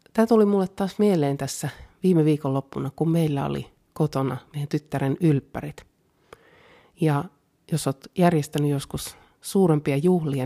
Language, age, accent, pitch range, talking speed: Finnish, 30-49, native, 140-160 Hz, 120 wpm